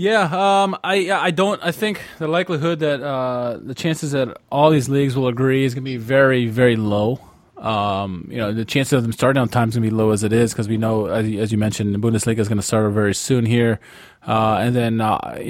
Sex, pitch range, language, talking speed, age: male, 115-140 Hz, English, 245 wpm, 20-39